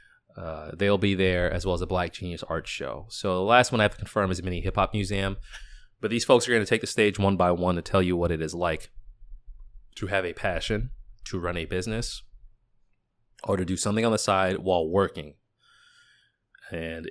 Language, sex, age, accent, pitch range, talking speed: English, male, 20-39, American, 90-110 Hz, 220 wpm